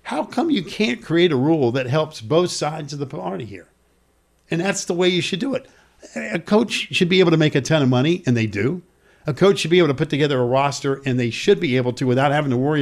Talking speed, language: 265 wpm, English